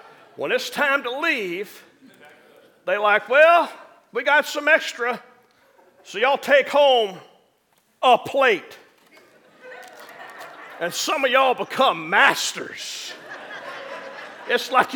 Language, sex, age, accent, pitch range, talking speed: English, male, 50-69, American, 240-290 Hz, 105 wpm